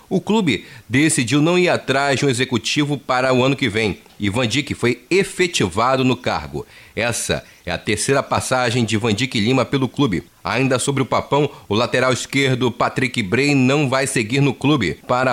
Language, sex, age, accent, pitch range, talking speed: Portuguese, male, 30-49, Brazilian, 115-150 Hz, 185 wpm